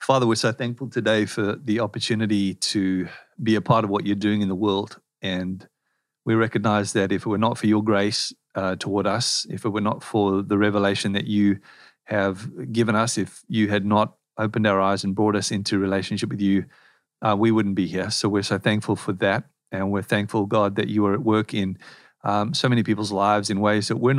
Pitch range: 100-115 Hz